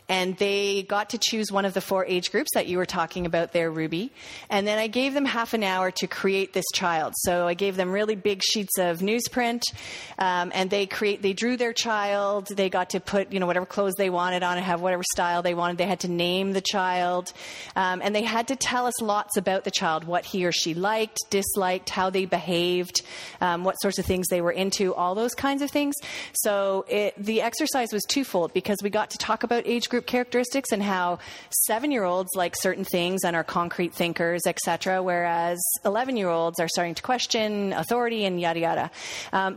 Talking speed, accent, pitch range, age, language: 210 wpm, American, 175-210 Hz, 30-49, English